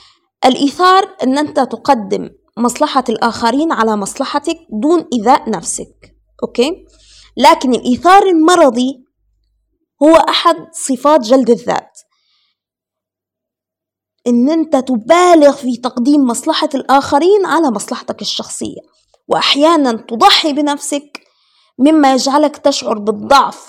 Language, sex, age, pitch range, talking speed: Arabic, female, 20-39, 235-310 Hz, 95 wpm